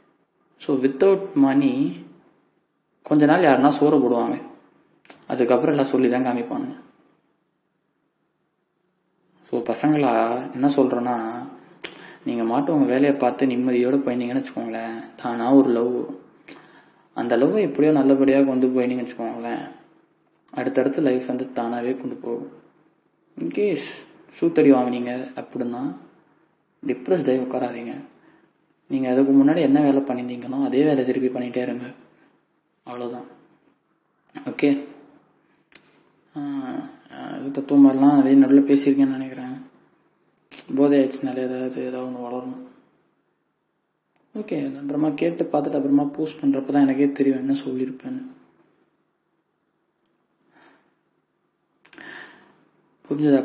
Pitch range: 125-145 Hz